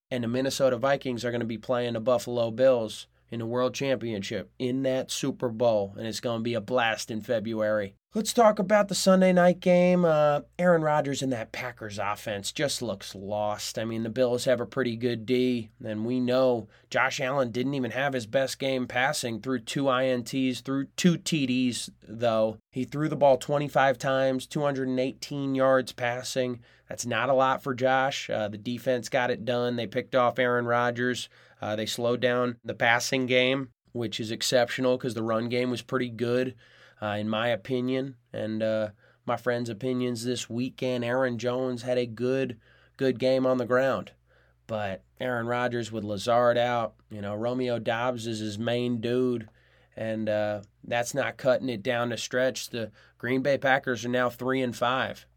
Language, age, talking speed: English, 20-39, 185 wpm